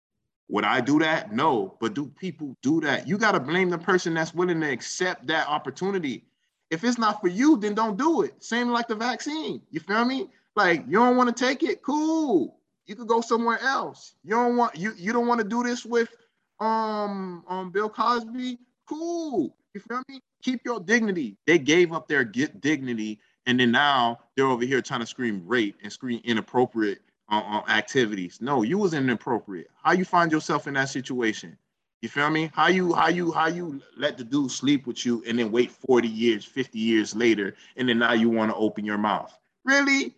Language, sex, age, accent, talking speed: English, male, 20-39, American, 215 wpm